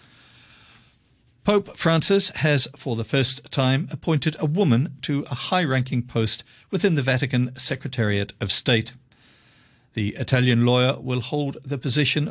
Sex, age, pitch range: male, 50-69, 115-145 Hz